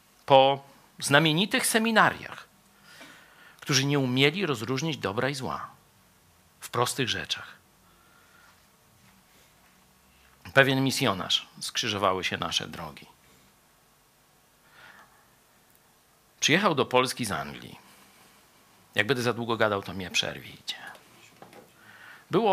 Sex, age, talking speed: male, 50-69, 90 wpm